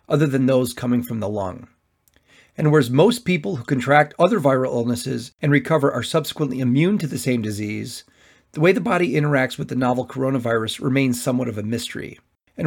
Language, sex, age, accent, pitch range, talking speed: English, male, 40-59, American, 125-155 Hz, 190 wpm